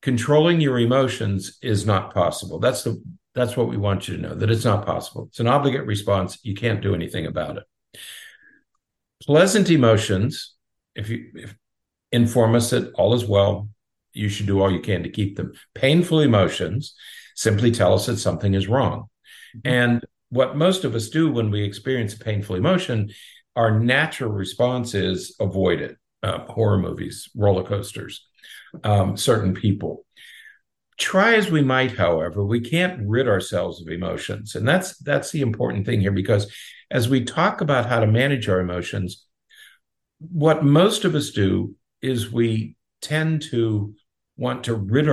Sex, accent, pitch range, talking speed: male, American, 100-130 Hz, 165 wpm